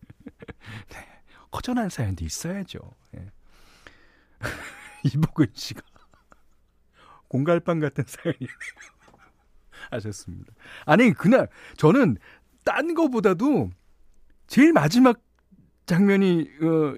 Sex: male